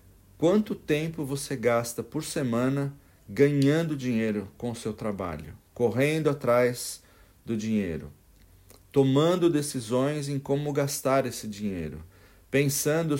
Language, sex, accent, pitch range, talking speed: Portuguese, male, Brazilian, 105-140 Hz, 110 wpm